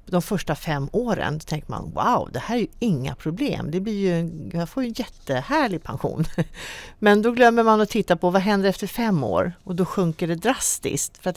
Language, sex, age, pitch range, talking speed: Swedish, female, 40-59, 150-200 Hz, 210 wpm